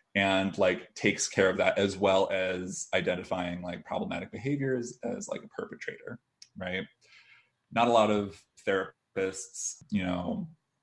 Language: English